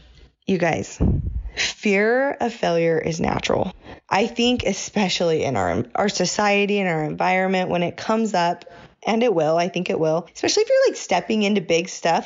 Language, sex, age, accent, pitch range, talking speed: English, female, 20-39, American, 175-230 Hz, 175 wpm